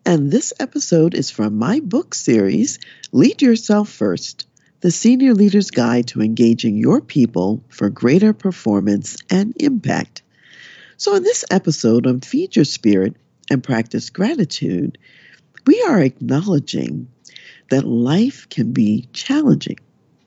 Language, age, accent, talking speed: English, 50-69, American, 125 wpm